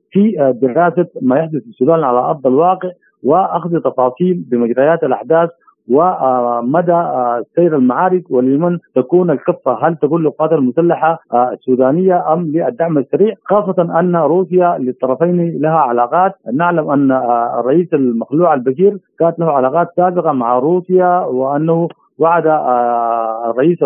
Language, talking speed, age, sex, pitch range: Arabic, 120 wpm, 50-69, male, 130-175 Hz